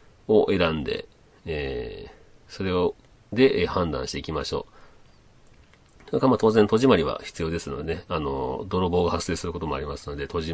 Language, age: Japanese, 40-59